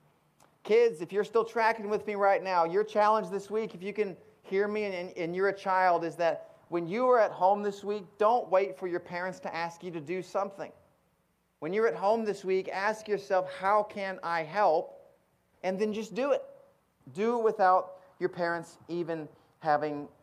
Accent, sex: American, male